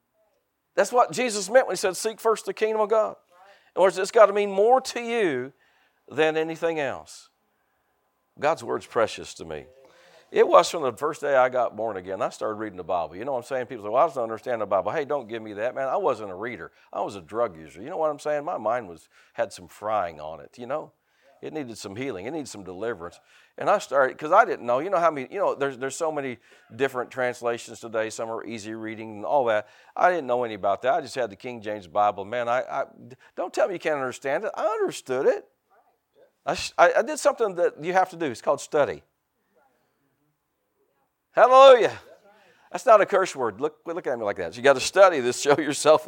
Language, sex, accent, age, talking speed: English, male, American, 50-69, 235 wpm